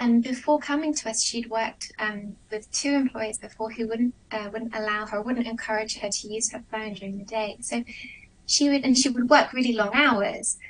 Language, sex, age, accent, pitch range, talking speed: English, female, 10-29, British, 220-275 Hz, 215 wpm